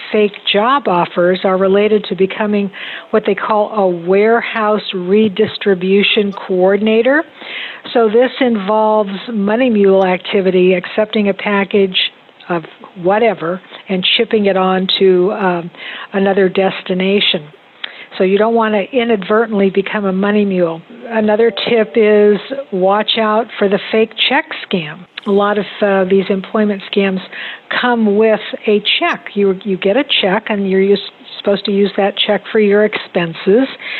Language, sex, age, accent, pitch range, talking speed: English, female, 60-79, American, 190-220 Hz, 140 wpm